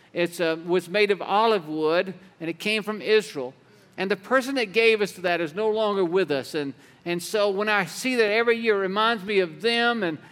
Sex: male